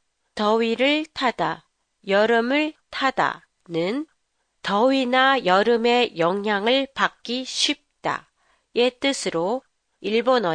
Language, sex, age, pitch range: Japanese, female, 40-59, 190-275 Hz